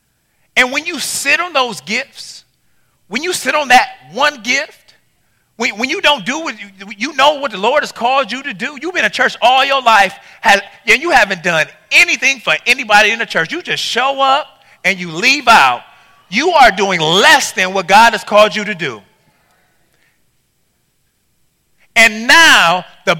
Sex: male